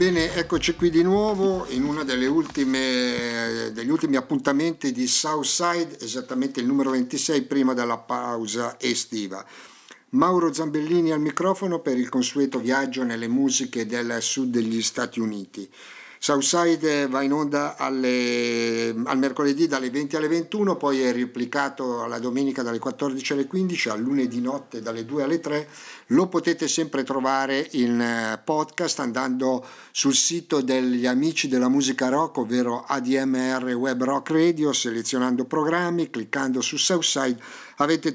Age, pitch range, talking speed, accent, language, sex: 50-69, 125-160 Hz, 135 wpm, native, Italian, male